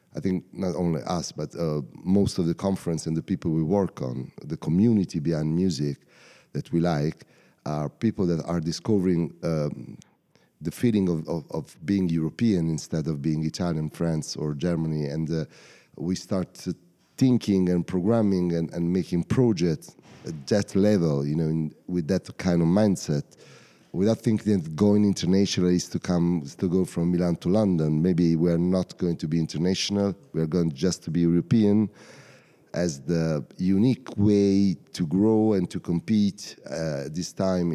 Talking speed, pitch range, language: 165 wpm, 80-100 Hz, French